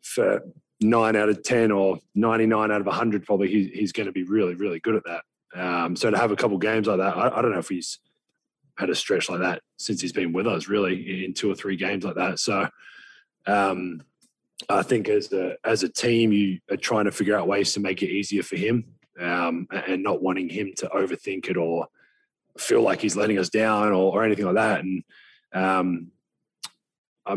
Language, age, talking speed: English, 20-39, 215 wpm